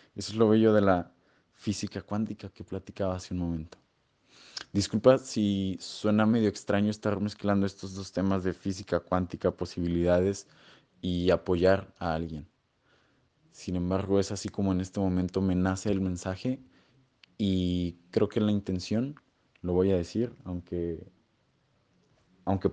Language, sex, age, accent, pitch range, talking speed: Spanish, male, 20-39, Mexican, 95-105 Hz, 145 wpm